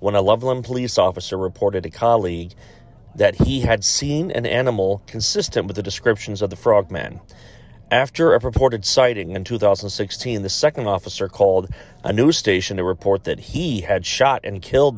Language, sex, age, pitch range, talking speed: English, male, 40-59, 100-120 Hz, 170 wpm